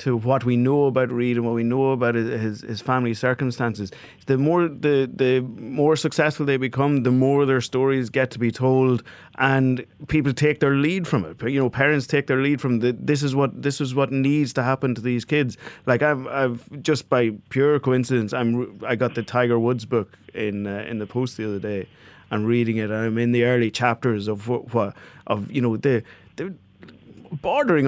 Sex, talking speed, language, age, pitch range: male, 215 wpm, English, 30-49, 115-135 Hz